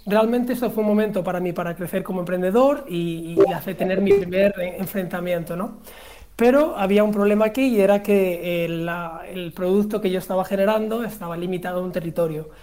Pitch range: 180-215 Hz